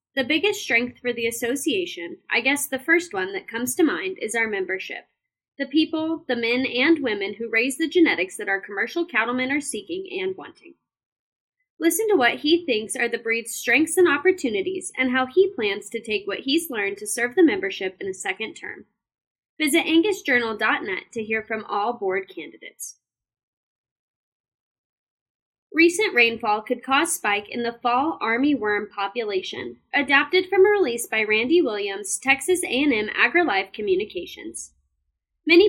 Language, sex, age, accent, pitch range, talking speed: English, female, 10-29, American, 230-355 Hz, 160 wpm